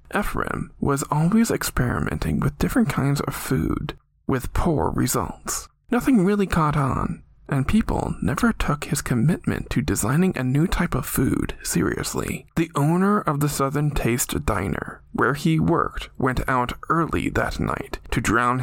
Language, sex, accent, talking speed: English, male, American, 150 wpm